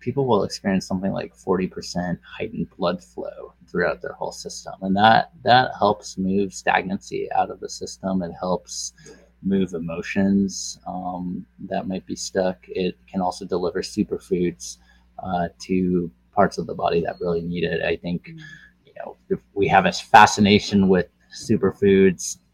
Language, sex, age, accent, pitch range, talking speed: English, male, 20-39, American, 85-95 Hz, 155 wpm